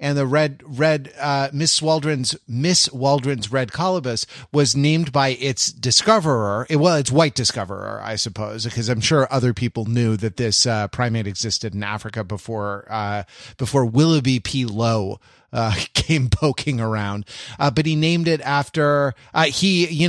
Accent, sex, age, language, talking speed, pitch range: American, male, 30-49, English, 165 wpm, 115-140 Hz